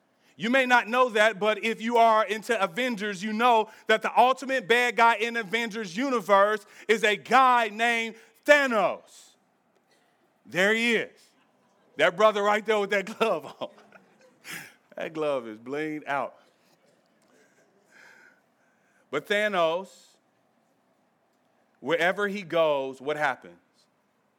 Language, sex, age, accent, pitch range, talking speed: English, male, 40-59, American, 210-255 Hz, 120 wpm